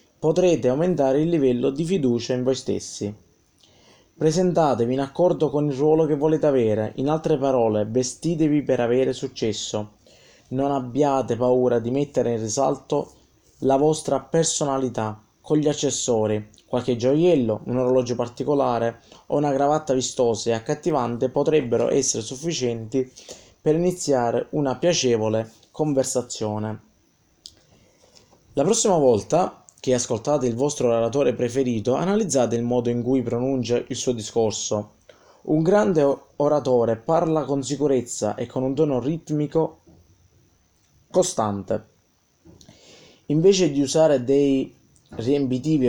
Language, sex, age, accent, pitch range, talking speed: Italian, male, 20-39, native, 115-150 Hz, 120 wpm